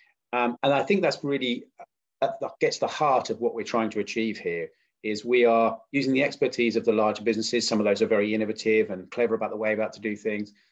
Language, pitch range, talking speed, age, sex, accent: English, 105-130 Hz, 240 wpm, 40-59, male, British